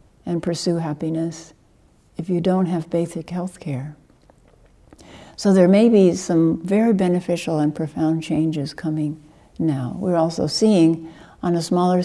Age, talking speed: 60-79, 140 wpm